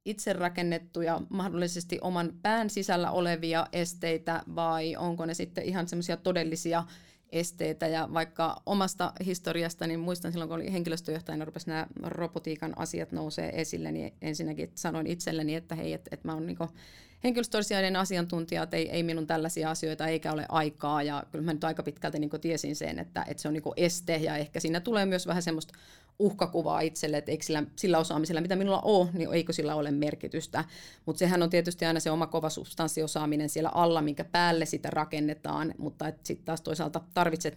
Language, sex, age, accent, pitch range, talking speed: Finnish, female, 30-49, native, 155-175 Hz, 175 wpm